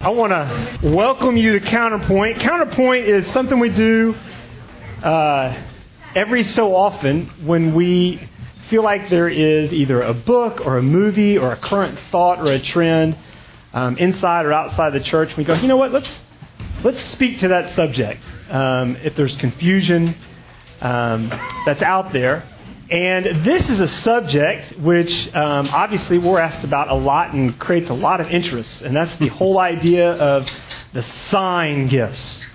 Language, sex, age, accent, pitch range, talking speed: English, male, 40-59, American, 135-185 Hz, 160 wpm